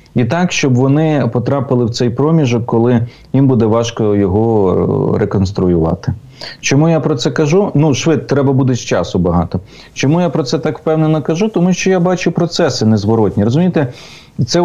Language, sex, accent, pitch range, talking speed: Ukrainian, male, native, 105-150 Hz, 170 wpm